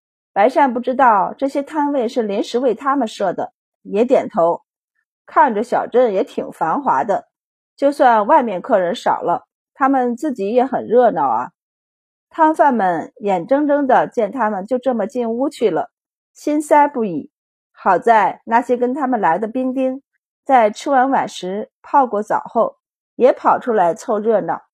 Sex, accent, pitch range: female, native, 215-285 Hz